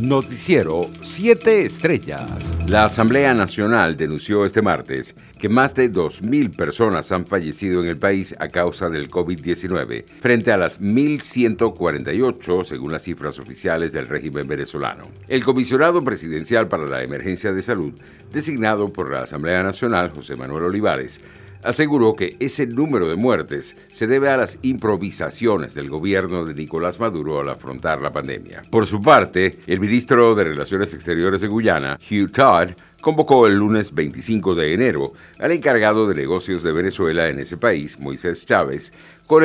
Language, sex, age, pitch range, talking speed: Spanish, male, 60-79, 85-120 Hz, 150 wpm